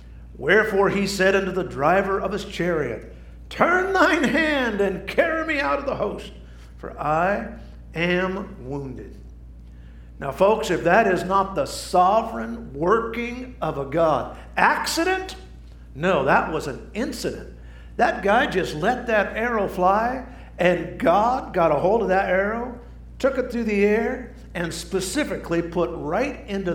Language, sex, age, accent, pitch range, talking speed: English, male, 50-69, American, 125-210 Hz, 150 wpm